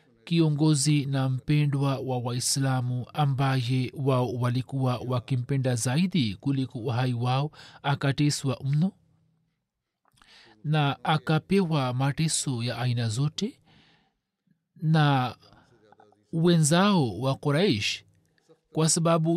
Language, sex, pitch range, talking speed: Swahili, male, 130-165 Hz, 80 wpm